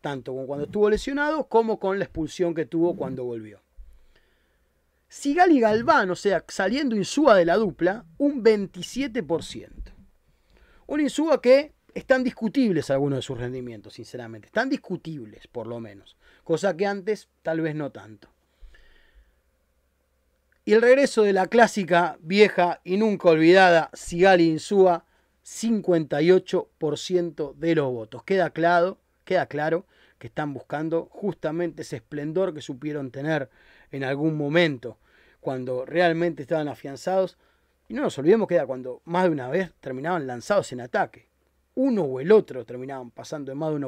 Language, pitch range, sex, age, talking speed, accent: Spanish, 140-195 Hz, male, 30-49, 150 wpm, Argentinian